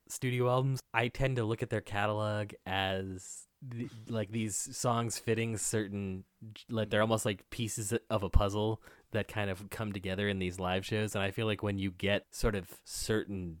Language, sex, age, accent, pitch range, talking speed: English, male, 20-39, American, 90-115 Hz, 185 wpm